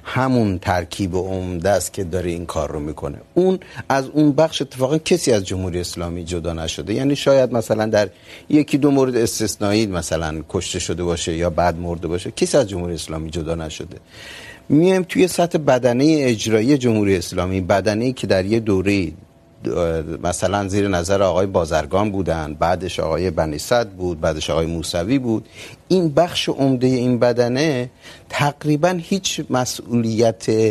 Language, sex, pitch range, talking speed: Urdu, male, 95-135 Hz, 155 wpm